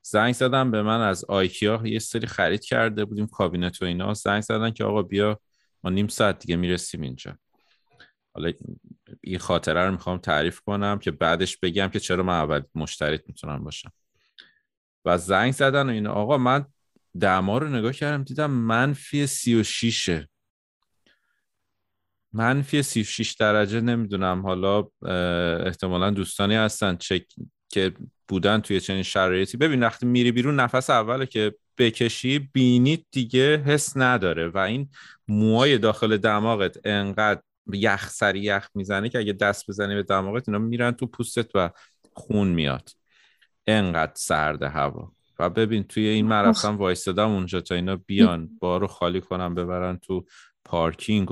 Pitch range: 95-115 Hz